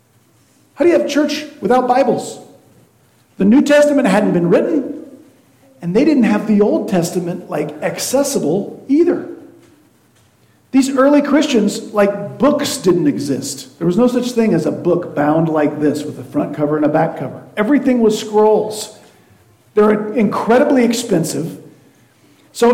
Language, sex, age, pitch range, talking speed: English, male, 40-59, 170-260 Hz, 150 wpm